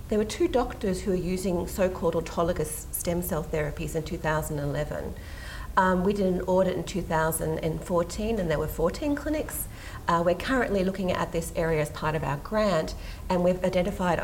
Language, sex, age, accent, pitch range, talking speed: English, female, 40-59, Australian, 165-215 Hz, 175 wpm